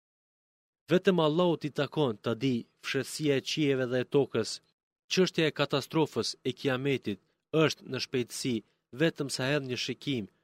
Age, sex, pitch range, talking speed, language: 30-49, male, 120-145 Hz, 155 wpm, Greek